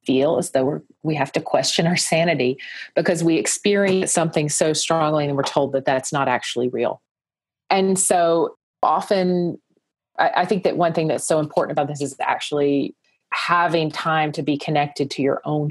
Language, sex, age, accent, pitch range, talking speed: English, female, 40-59, American, 140-175 Hz, 180 wpm